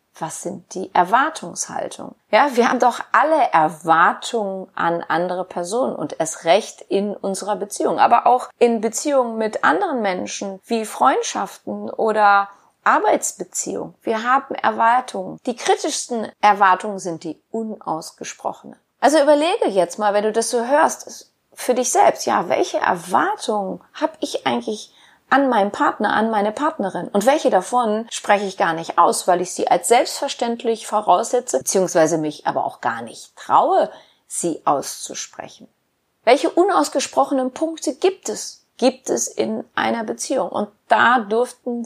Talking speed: 140 wpm